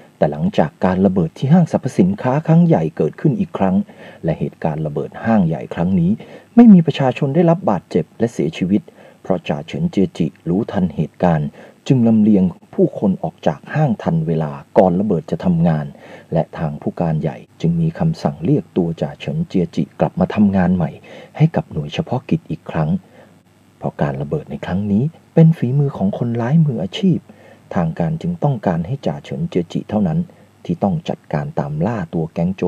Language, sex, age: Thai, male, 30-49